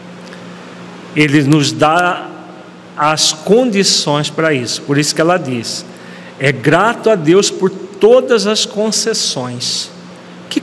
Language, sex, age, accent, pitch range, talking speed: Portuguese, male, 40-59, Brazilian, 150-195 Hz, 120 wpm